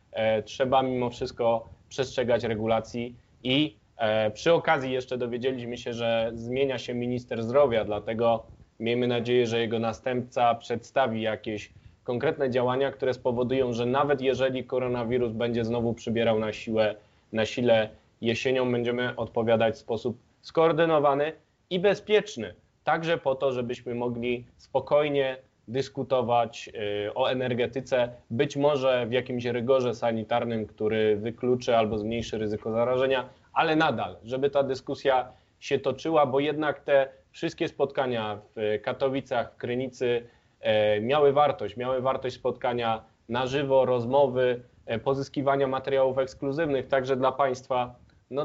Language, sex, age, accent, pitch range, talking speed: Polish, male, 20-39, native, 115-135 Hz, 120 wpm